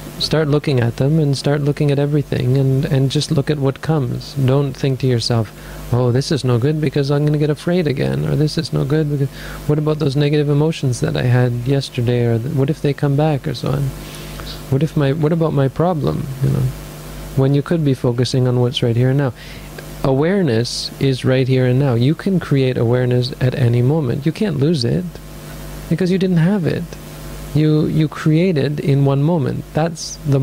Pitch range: 125-155 Hz